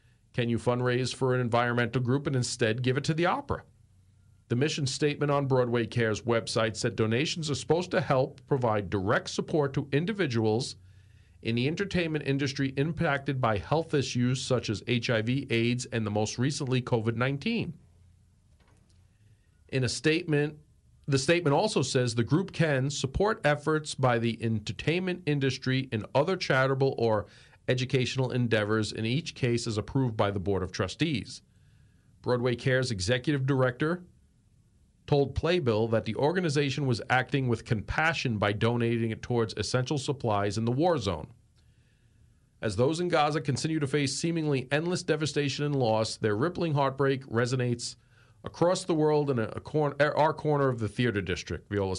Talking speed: 155 wpm